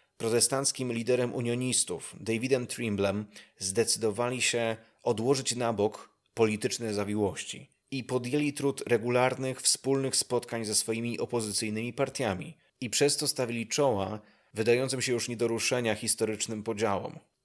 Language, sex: Polish, male